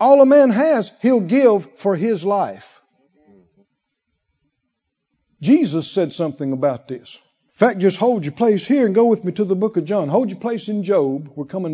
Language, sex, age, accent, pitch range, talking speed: English, male, 60-79, American, 175-260 Hz, 190 wpm